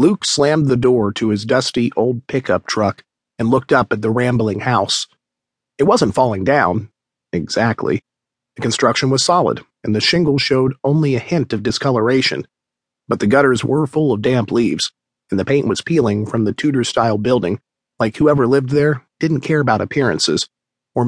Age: 40-59